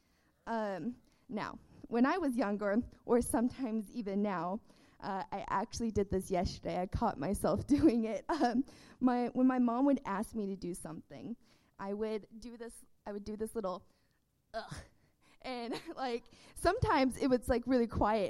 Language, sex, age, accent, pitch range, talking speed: English, female, 20-39, American, 200-255 Hz, 160 wpm